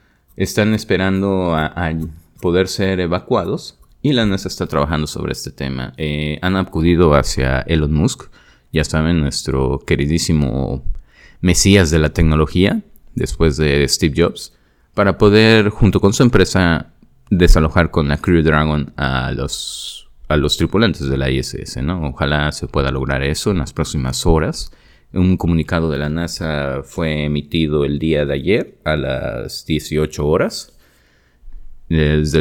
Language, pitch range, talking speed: Spanish, 70-85 Hz, 140 wpm